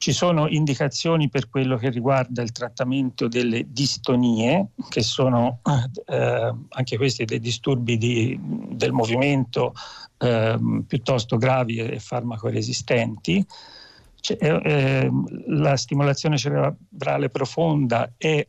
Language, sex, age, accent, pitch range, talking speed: Italian, male, 50-69, native, 125-150 Hz, 105 wpm